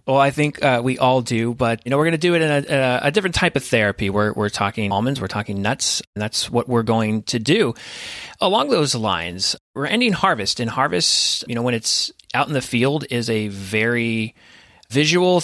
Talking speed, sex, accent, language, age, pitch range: 220 wpm, male, American, English, 30-49, 115-160 Hz